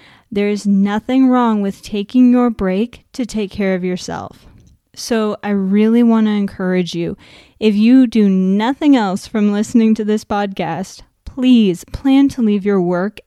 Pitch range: 195-240 Hz